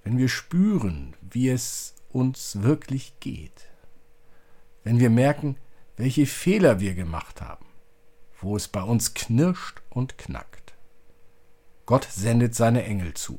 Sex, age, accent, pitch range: male, 50-69, German, 95-125 Hz